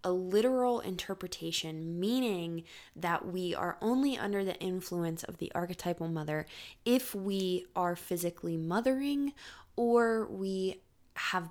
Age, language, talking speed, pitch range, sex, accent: 20-39, English, 120 wpm, 165-200 Hz, female, American